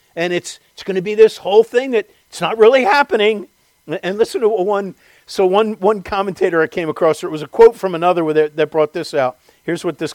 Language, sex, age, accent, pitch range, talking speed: English, male, 50-69, American, 160-225 Hz, 230 wpm